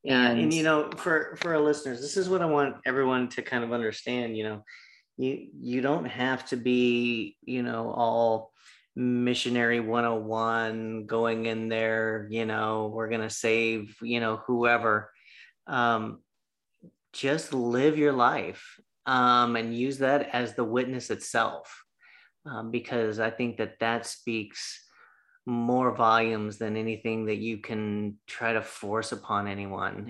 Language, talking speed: English, 155 wpm